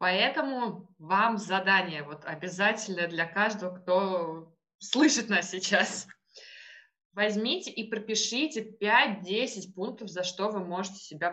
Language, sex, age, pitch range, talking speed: Russian, female, 20-39, 185-220 Hz, 110 wpm